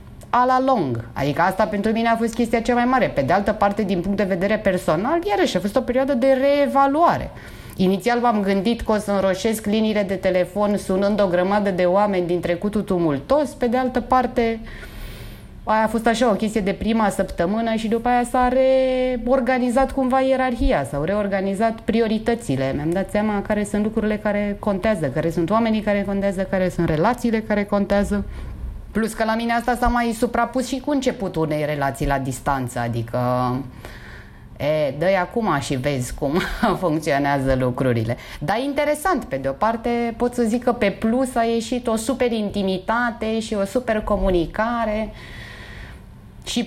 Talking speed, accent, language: 170 wpm, native, Romanian